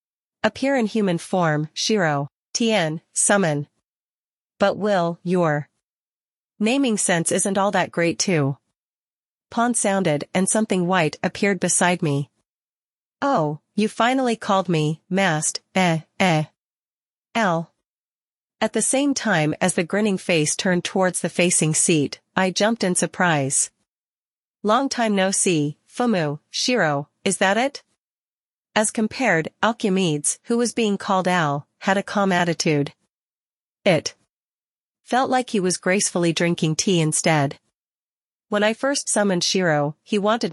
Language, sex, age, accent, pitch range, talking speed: English, female, 40-59, American, 160-210 Hz, 130 wpm